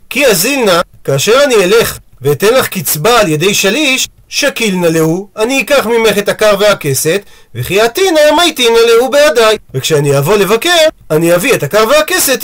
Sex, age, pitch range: male, 40-59, 185-255 Hz